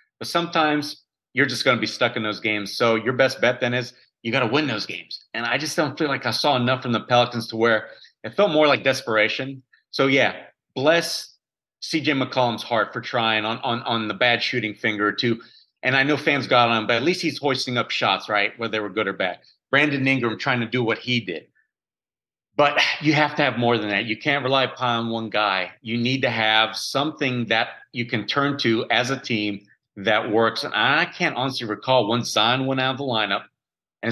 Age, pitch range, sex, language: 30-49, 110-135 Hz, male, English